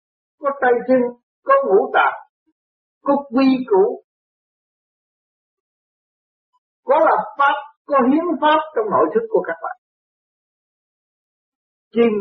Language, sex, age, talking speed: Vietnamese, male, 50-69, 110 wpm